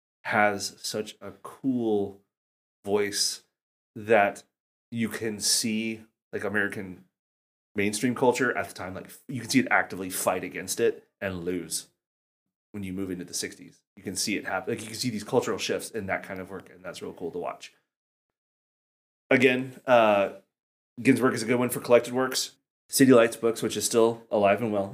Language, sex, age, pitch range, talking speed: English, male, 30-49, 90-115 Hz, 180 wpm